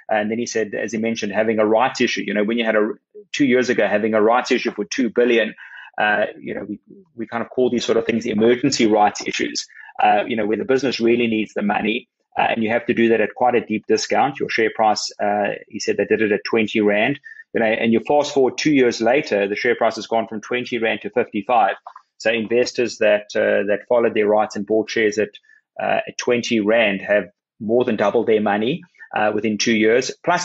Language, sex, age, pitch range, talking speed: English, male, 30-49, 110-125 Hz, 245 wpm